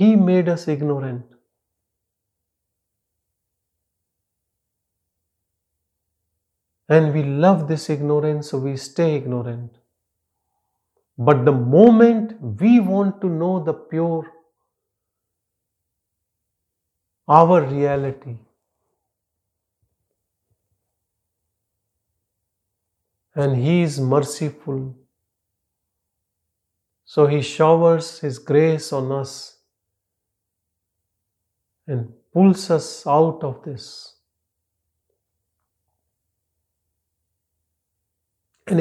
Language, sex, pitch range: English, male, 95-145 Hz